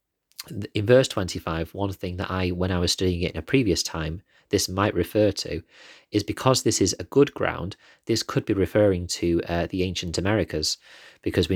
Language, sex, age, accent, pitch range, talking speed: English, male, 30-49, British, 85-100 Hz, 195 wpm